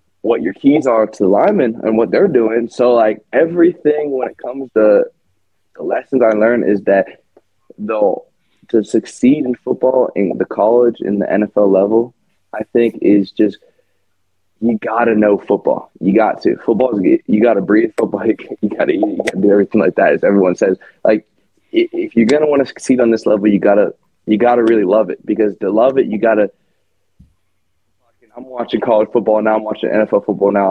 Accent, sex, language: American, male, English